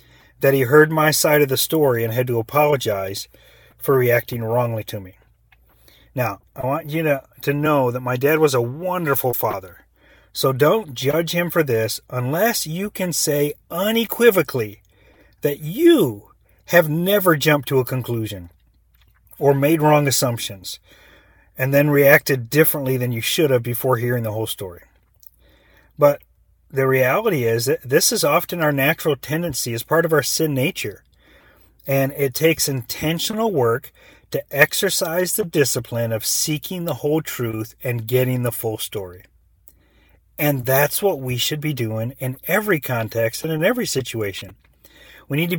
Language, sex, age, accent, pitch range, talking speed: English, male, 40-59, American, 115-155 Hz, 155 wpm